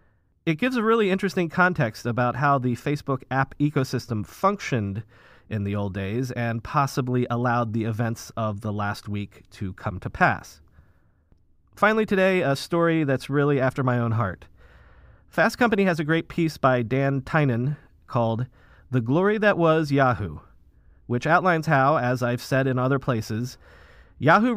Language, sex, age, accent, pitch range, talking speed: English, male, 30-49, American, 110-155 Hz, 160 wpm